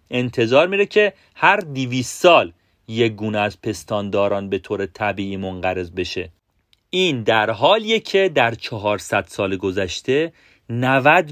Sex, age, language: male, 40-59, Persian